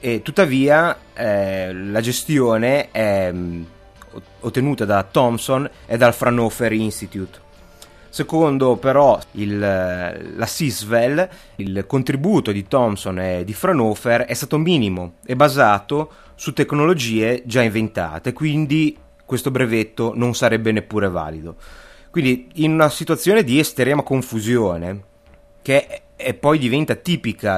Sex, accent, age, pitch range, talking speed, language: male, native, 30-49, 100-130 Hz, 120 wpm, Italian